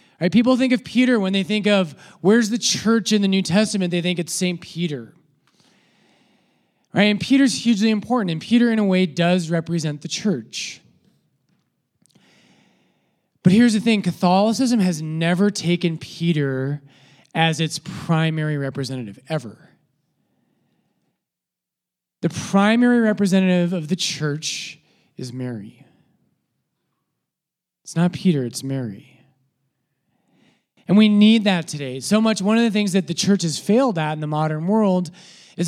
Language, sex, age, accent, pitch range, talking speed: English, male, 20-39, American, 155-205 Hz, 145 wpm